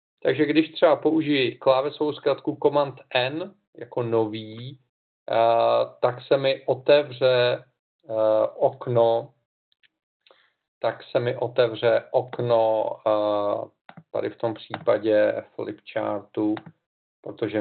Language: Czech